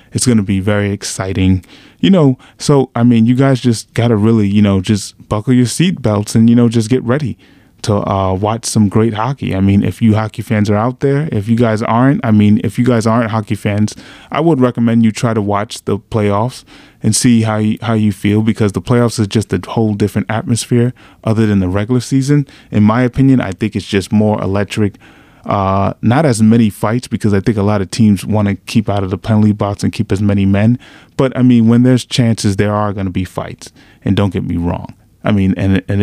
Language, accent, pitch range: English, American, 100-120 Hz